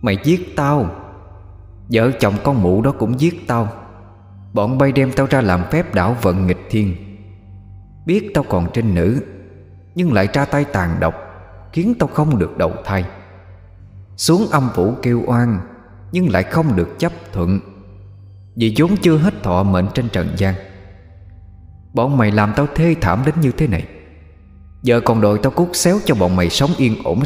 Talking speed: 180 wpm